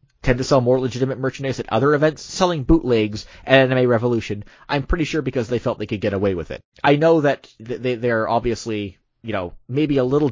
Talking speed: 215 wpm